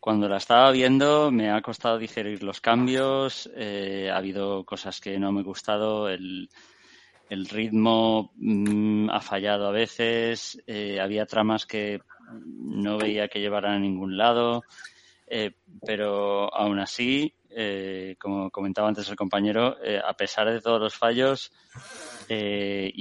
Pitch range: 100-115 Hz